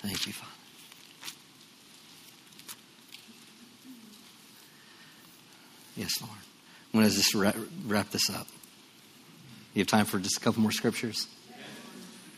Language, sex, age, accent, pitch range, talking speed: English, male, 50-69, American, 115-130 Hz, 100 wpm